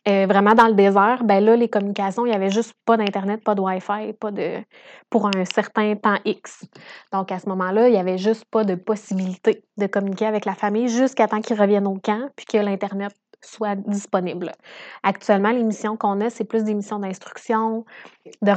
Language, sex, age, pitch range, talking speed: French, female, 20-39, 200-225 Hz, 205 wpm